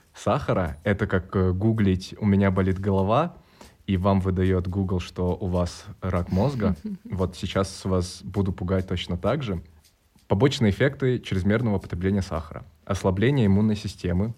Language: Russian